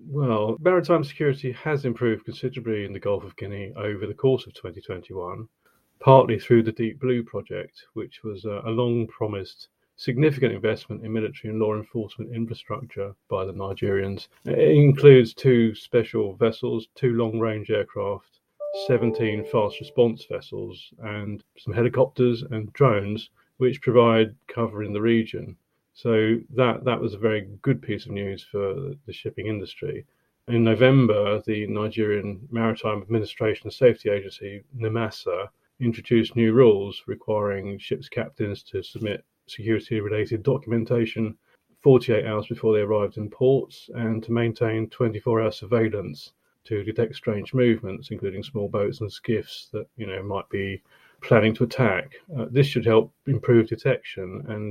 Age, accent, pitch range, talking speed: 30-49, British, 105-125 Hz, 140 wpm